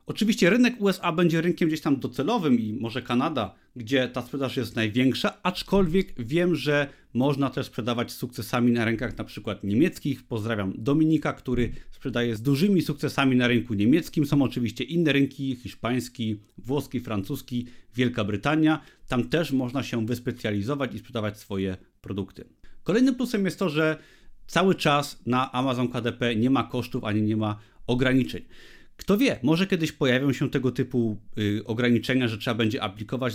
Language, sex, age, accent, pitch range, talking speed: Polish, male, 30-49, native, 120-150 Hz, 155 wpm